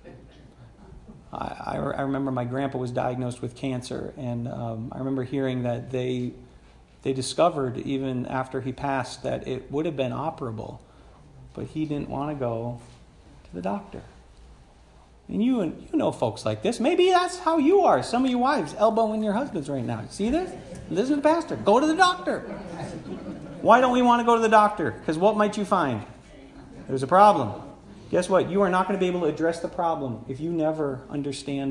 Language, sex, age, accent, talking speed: English, male, 40-59, American, 195 wpm